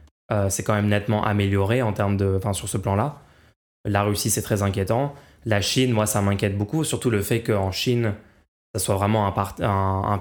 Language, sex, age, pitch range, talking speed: French, male, 20-39, 100-120 Hz, 210 wpm